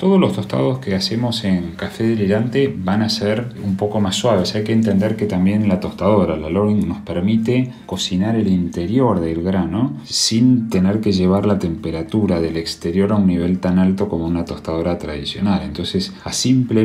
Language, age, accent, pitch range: Spanish, 30-49, Argentinian, 90-110 Hz